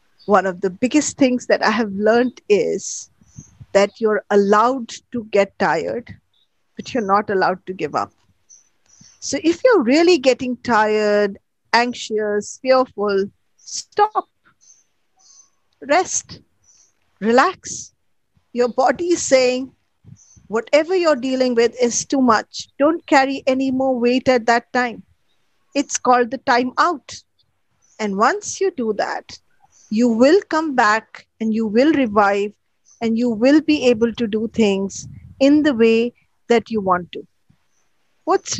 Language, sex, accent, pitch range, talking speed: English, female, Indian, 210-265 Hz, 135 wpm